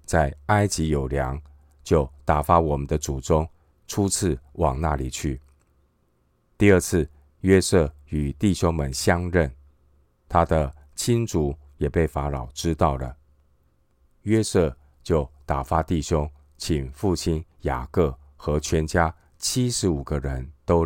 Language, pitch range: Chinese, 70-85 Hz